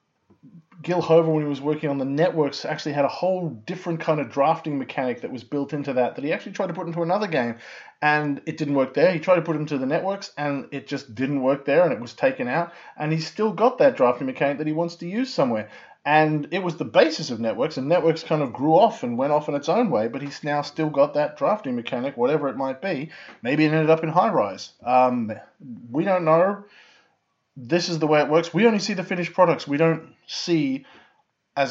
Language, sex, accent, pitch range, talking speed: English, male, Australian, 130-170 Hz, 240 wpm